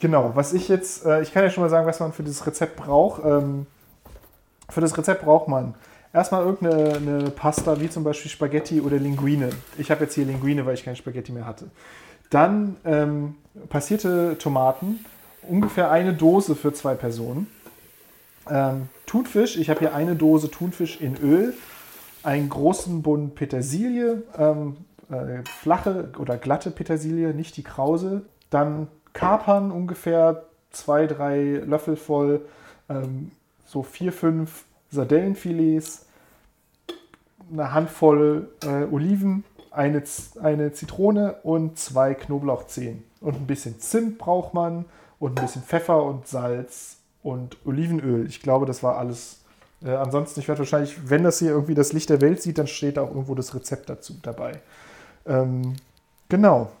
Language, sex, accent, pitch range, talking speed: German, male, German, 140-165 Hz, 150 wpm